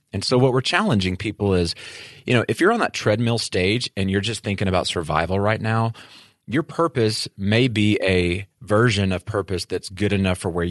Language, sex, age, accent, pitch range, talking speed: English, male, 30-49, American, 90-120 Hz, 200 wpm